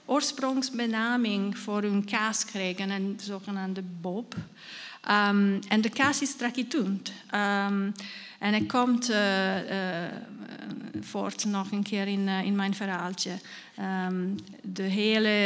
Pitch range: 200-245 Hz